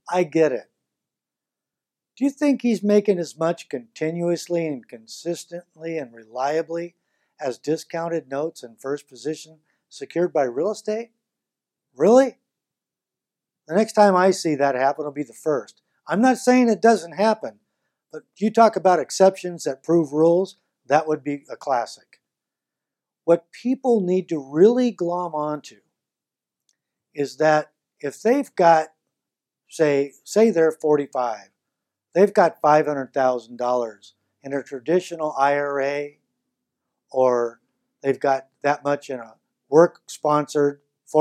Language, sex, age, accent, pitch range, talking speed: English, male, 60-79, American, 140-195 Hz, 130 wpm